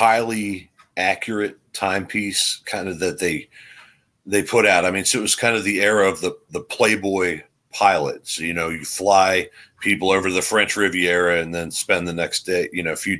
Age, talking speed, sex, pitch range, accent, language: 40-59, 195 wpm, male, 80-105 Hz, American, English